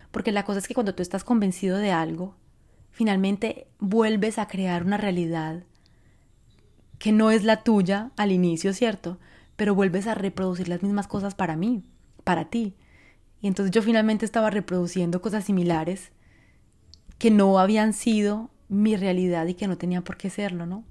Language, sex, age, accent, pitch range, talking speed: Spanish, female, 20-39, Colombian, 180-215 Hz, 165 wpm